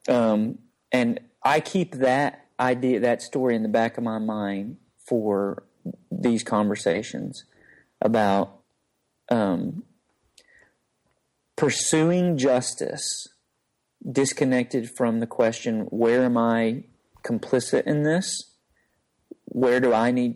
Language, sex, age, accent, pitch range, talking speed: English, male, 40-59, American, 110-130 Hz, 105 wpm